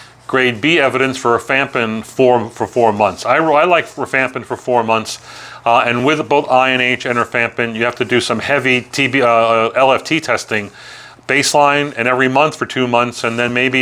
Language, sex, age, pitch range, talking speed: English, male, 40-59, 120-150 Hz, 185 wpm